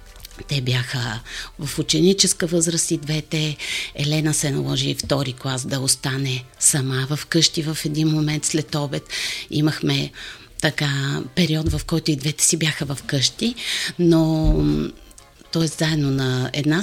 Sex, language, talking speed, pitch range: female, Bulgarian, 135 wpm, 135-165 Hz